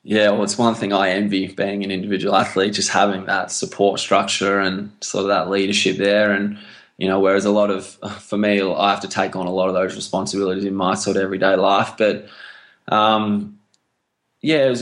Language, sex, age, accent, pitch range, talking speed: English, male, 20-39, Australian, 100-105 Hz, 210 wpm